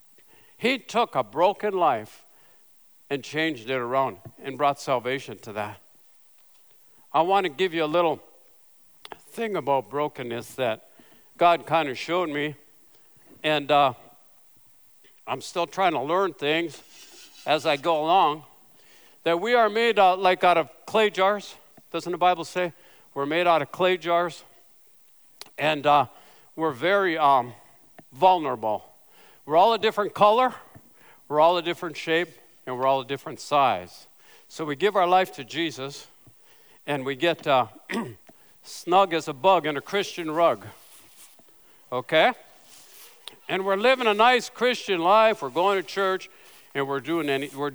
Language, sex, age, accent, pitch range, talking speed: English, male, 60-79, American, 145-205 Hz, 150 wpm